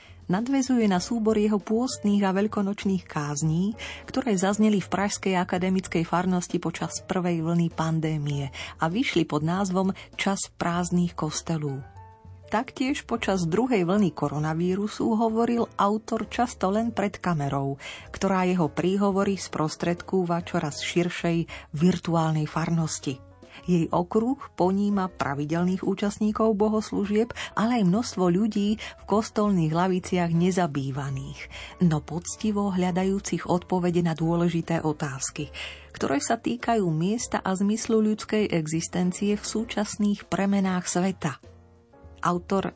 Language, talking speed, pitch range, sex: Slovak, 110 wpm, 160-200 Hz, female